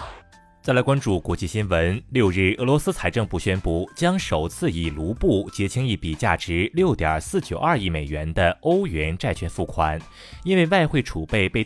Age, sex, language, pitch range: 20-39, male, Chinese, 90-130 Hz